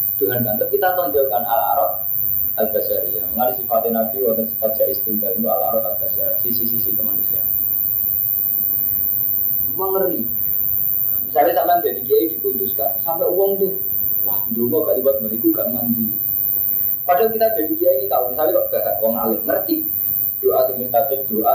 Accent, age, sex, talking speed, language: native, 20-39, male, 140 wpm, Indonesian